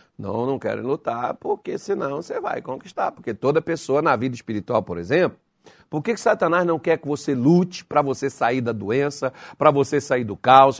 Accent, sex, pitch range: Brazilian, male, 135-225 Hz